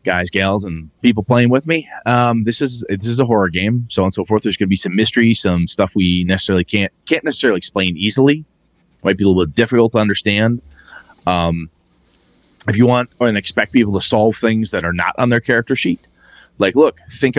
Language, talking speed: English, 215 wpm